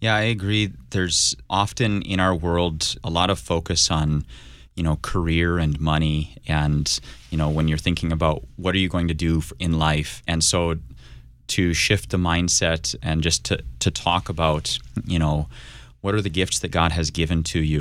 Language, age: English, 30-49